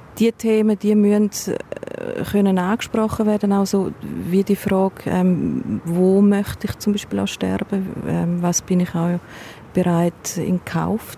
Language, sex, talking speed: German, female, 135 wpm